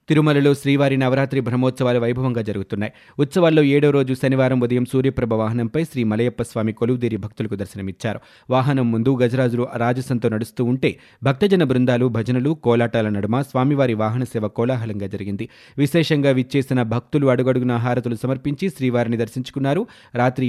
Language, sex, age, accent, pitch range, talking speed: Telugu, male, 20-39, native, 120-140 Hz, 130 wpm